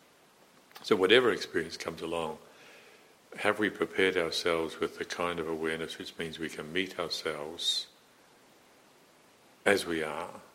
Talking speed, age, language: 130 wpm, 60-79, English